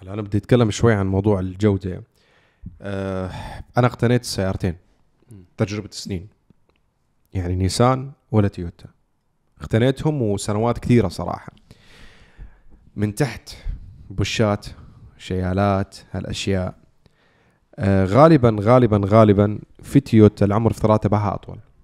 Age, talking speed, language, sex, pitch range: 20-39, 95 wpm, Arabic, male, 100-125 Hz